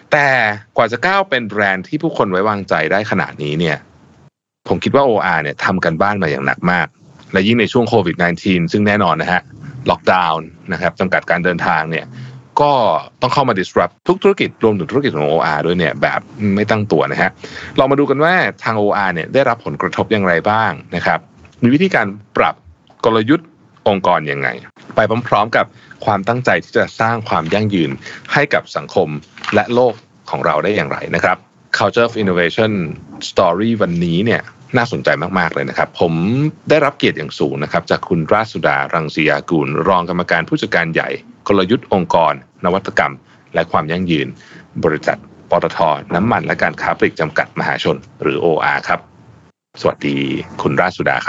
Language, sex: Thai, male